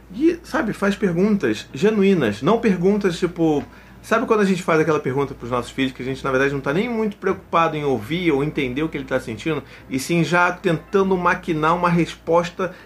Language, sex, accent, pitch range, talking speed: Portuguese, male, Brazilian, 140-185 Hz, 205 wpm